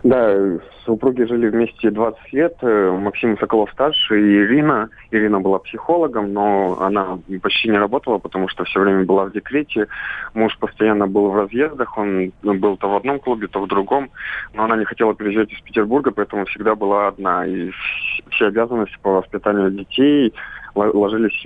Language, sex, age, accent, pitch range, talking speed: Russian, male, 20-39, native, 95-110 Hz, 160 wpm